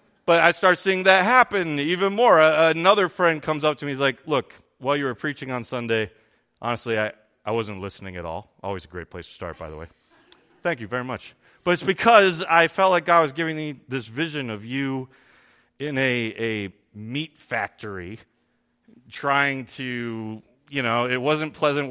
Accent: American